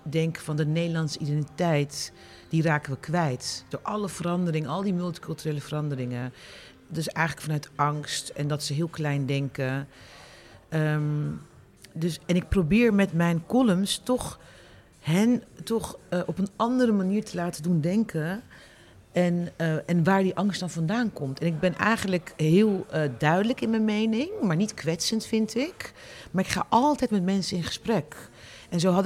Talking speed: 165 wpm